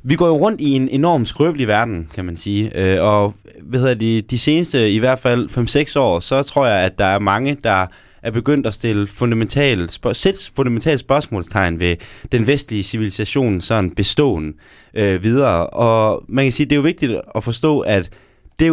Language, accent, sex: Danish, native, male